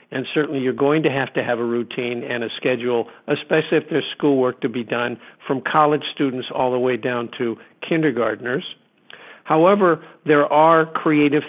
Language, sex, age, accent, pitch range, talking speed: English, male, 50-69, American, 135-155 Hz, 170 wpm